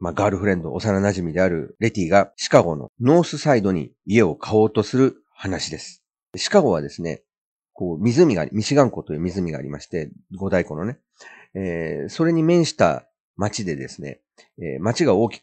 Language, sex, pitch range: Japanese, male, 95-155 Hz